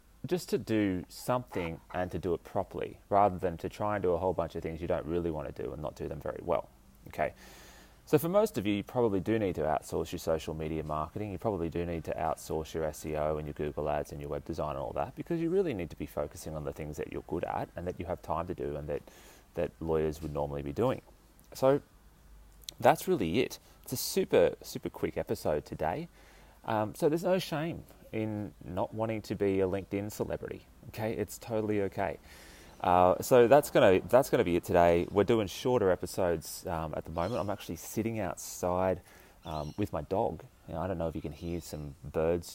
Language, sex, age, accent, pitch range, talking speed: English, male, 30-49, Australian, 80-105 Hz, 225 wpm